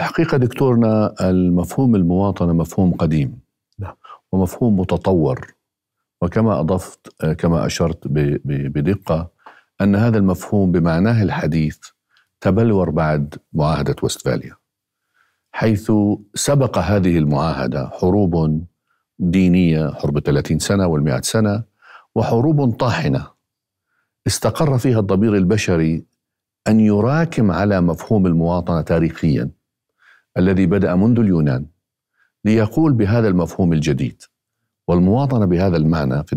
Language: Arabic